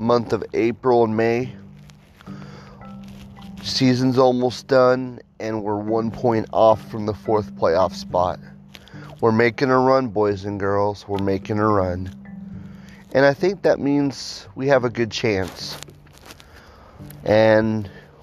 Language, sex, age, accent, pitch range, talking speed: English, male, 30-49, American, 95-120 Hz, 130 wpm